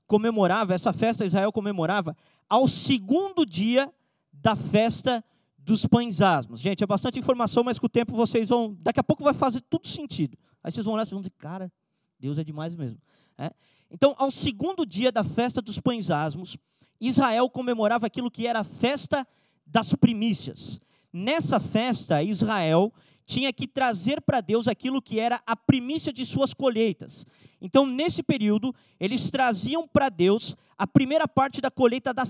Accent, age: Brazilian, 20-39